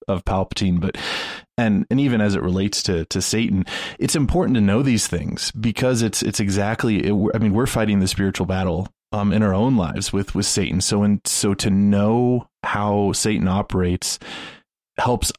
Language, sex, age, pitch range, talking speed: English, male, 20-39, 90-105 Hz, 185 wpm